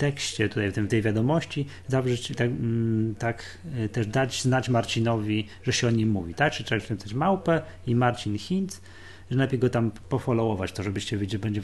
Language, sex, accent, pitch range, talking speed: Polish, male, native, 100-125 Hz, 190 wpm